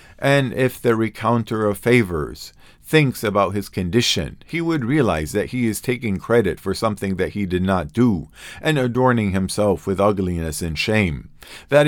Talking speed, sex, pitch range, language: 165 wpm, male, 95-120 Hz, English